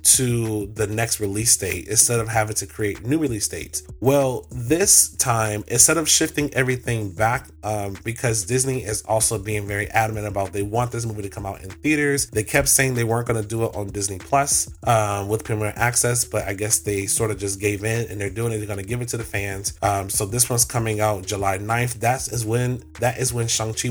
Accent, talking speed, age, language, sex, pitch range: American, 230 wpm, 20-39, English, male, 105-120 Hz